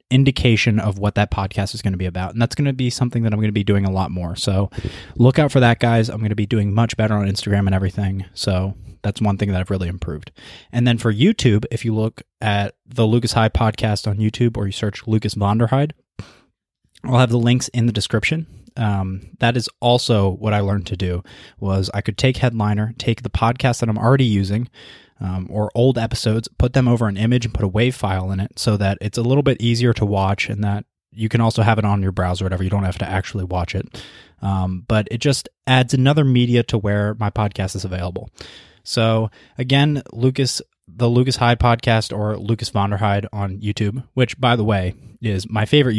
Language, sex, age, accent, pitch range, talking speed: English, male, 20-39, American, 100-120 Hz, 225 wpm